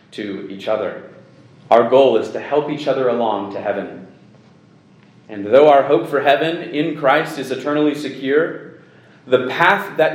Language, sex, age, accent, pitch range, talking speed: English, male, 30-49, American, 130-170 Hz, 160 wpm